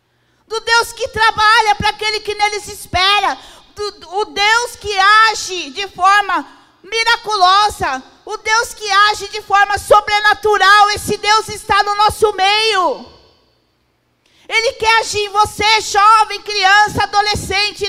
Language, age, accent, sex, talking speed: Portuguese, 40-59, Brazilian, female, 125 wpm